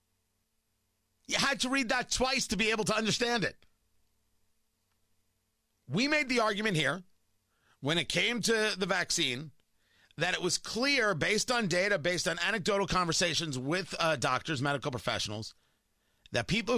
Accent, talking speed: American, 145 wpm